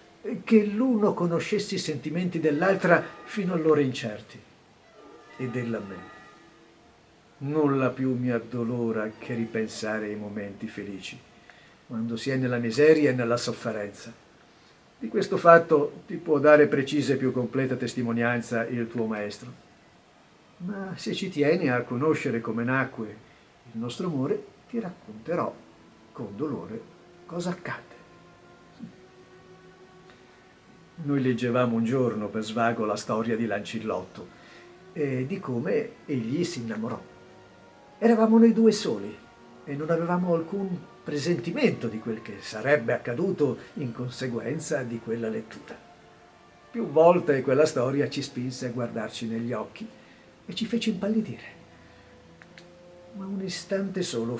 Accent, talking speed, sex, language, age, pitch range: native, 125 wpm, male, Italian, 50-69, 115-170 Hz